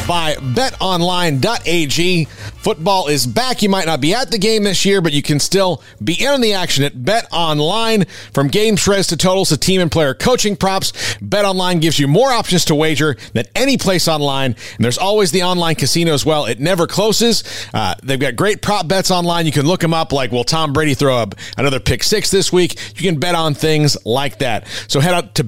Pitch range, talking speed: 140-195 Hz, 215 wpm